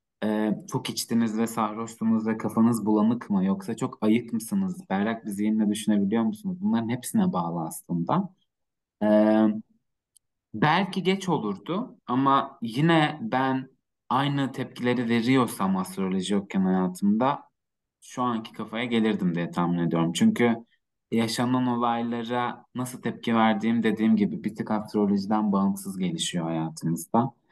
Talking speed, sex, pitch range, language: 120 wpm, male, 105-125 Hz, Turkish